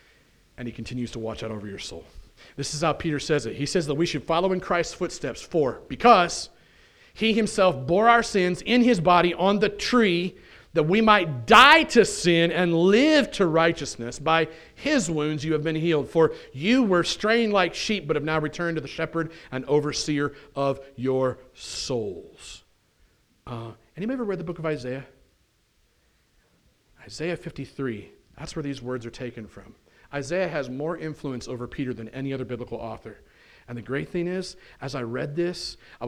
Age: 40-59